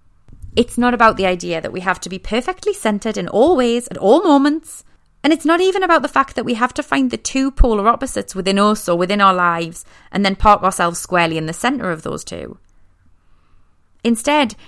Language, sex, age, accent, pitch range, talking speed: English, female, 30-49, British, 175-250 Hz, 215 wpm